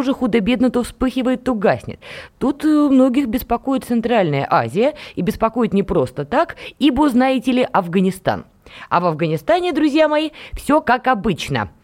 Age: 20-39